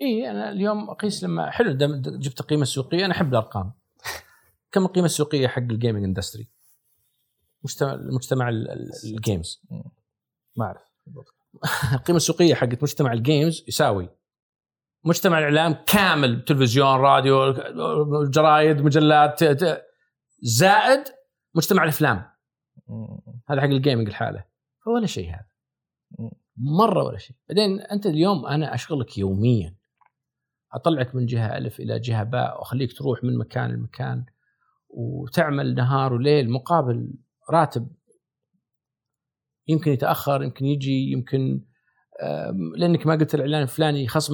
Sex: male